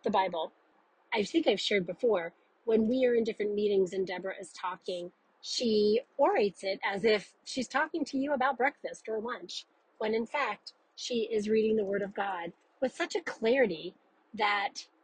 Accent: American